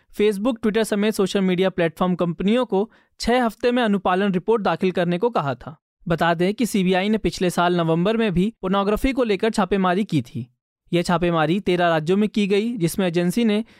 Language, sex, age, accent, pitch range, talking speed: Hindi, male, 20-39, native, 175-215 Hz, 155 wpm